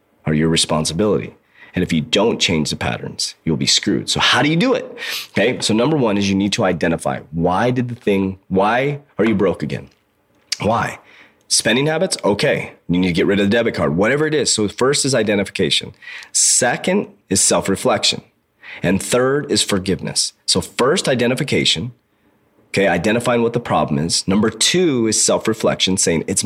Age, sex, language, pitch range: 30-49, male, English, 100-130 Hz